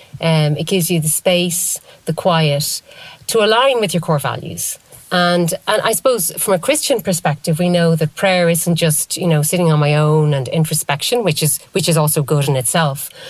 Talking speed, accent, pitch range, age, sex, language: 200 wpm, Irish, 155-195 Hz, 30-49, female, English